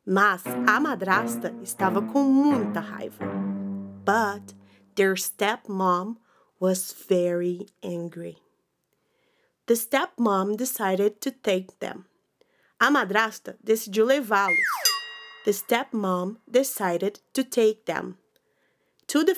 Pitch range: 185-260 Hz